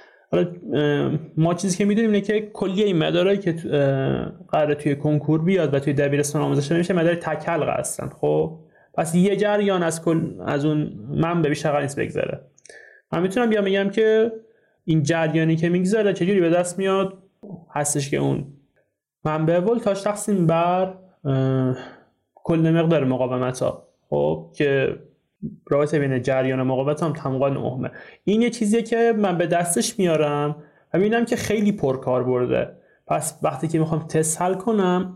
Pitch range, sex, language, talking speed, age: 145-190 Hz, male, Persian, 150 wpm, 30-49